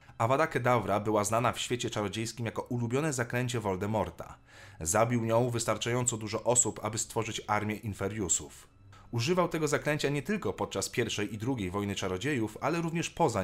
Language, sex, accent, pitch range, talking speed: Polish, male, native, 100-125 Hz, 150 wpm